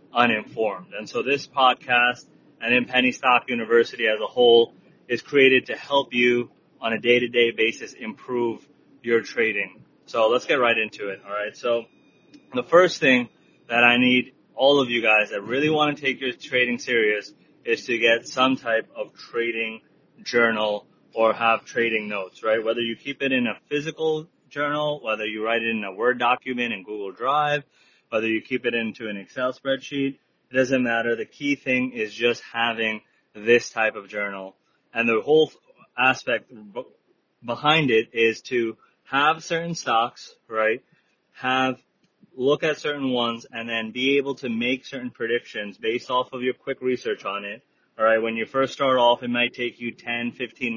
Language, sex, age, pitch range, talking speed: English, male, 30-49, 115-135 Hz, 180 wpm